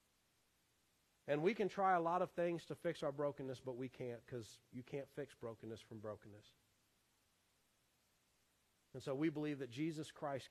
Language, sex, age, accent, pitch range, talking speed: English, male, 40-59, American, 120-155 Hz, 165 wpm